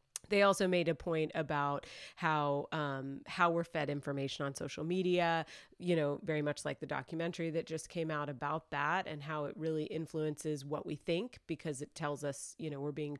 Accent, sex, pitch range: American, female, 150-185 Hz